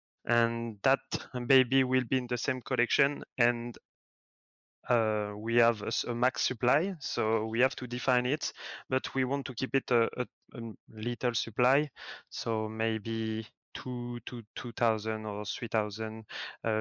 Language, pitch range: English, 115-130 Hz